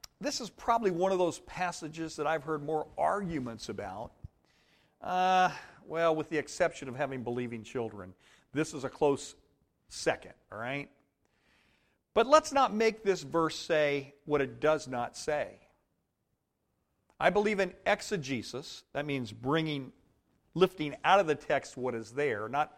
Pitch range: 130-185 Hz